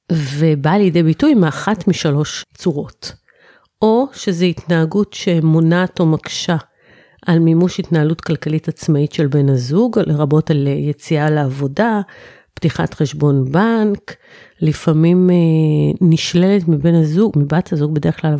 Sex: female